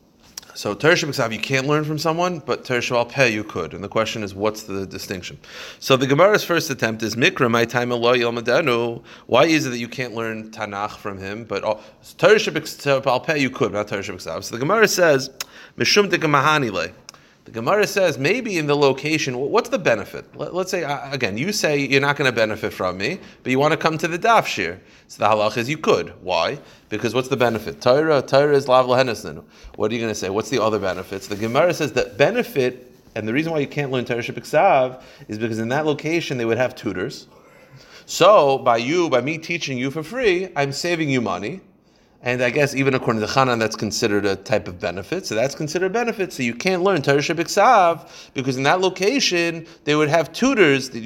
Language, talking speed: English, 210 wpm